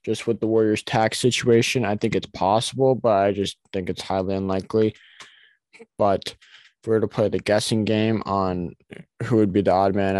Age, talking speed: 20-39, 195 wpm